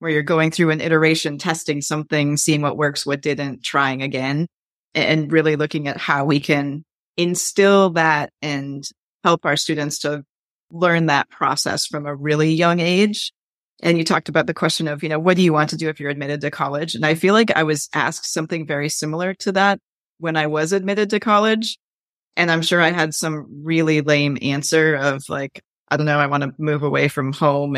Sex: female